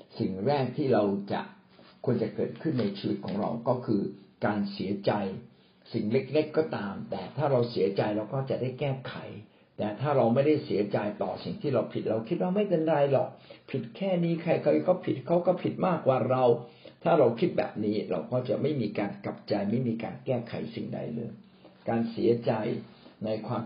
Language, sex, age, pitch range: Thai, male, 60-79, 110-145 Hz